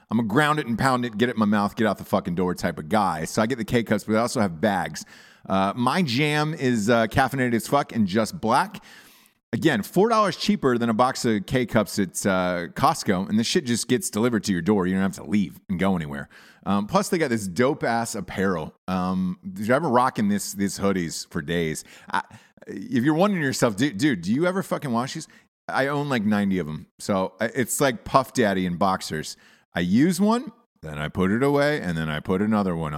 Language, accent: English, American